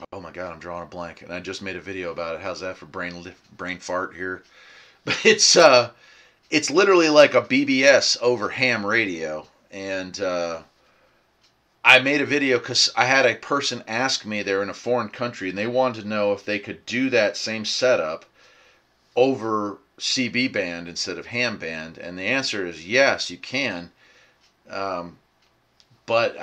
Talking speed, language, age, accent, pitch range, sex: 180 wpm, English, 30-49, American, 95-125 Hz, male